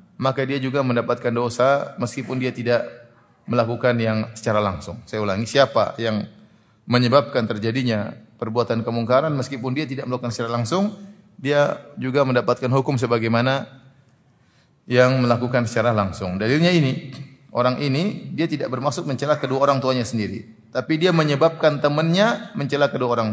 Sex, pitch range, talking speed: male, 120-150 Hz, 140 wpm